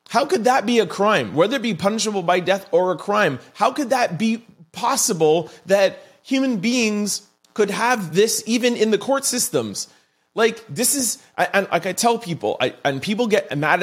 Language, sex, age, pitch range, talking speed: English, male, 30-49, 195-265 Hz, 185 wpm